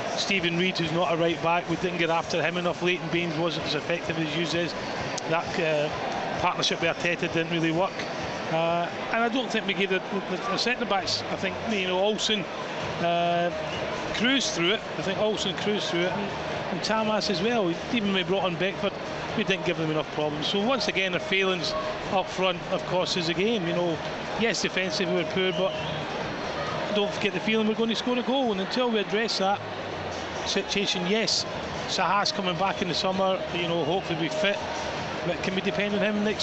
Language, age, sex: English, 30-49, male